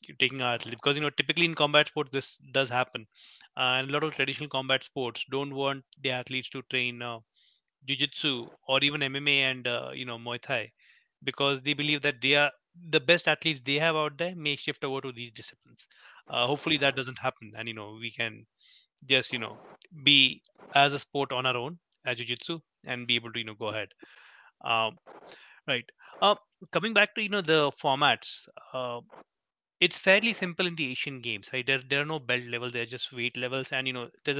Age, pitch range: 20-39, 125-150 Hz